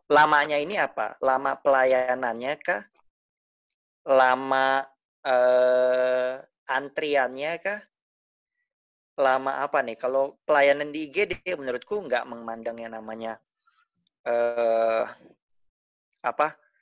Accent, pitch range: native, 125-150 Hz